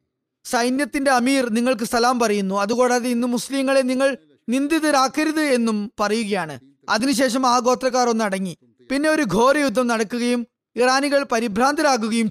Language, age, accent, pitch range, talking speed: Malayalam, 20-39, native, 225-275 Hz, 110 wpm